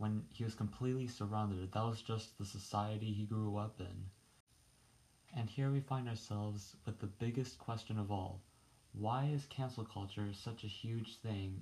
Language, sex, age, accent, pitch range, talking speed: English, male, 20-39, American, 105-120 Hz, 170 wpm